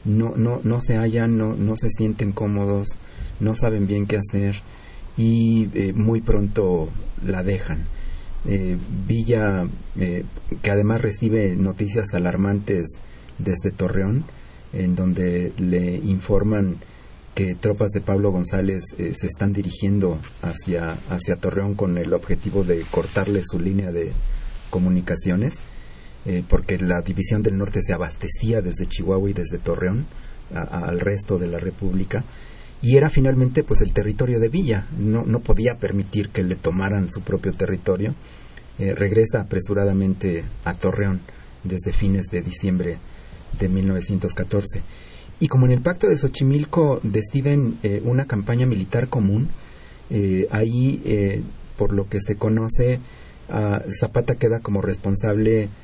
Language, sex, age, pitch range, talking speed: Spanish, male, 40-59, 90-110 Hz, 140 wpm